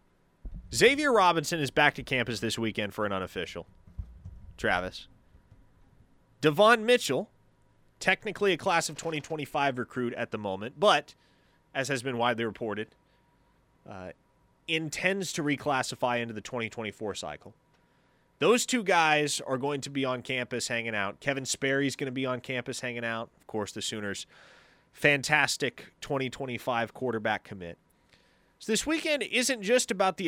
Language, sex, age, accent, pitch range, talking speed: English, male, 30-49, American, 110-150 Hz, 145 wpm